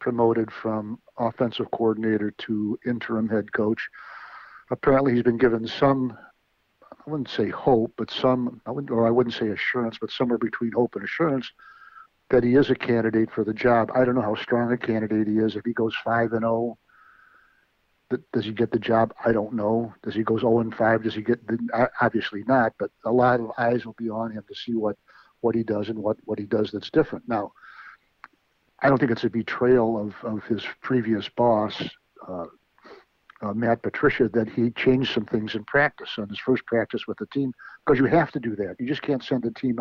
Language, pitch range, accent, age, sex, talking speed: English, 110-125 Hz, American, 50-69, male, 210 wpm